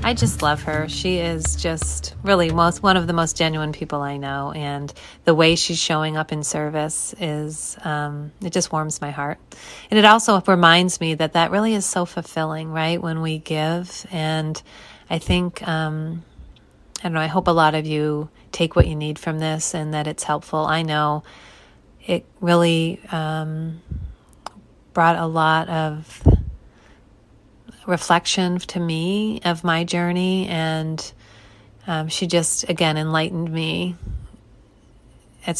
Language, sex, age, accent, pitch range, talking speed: English, female, 30-49, American, 155-175 Hz, 155 wpm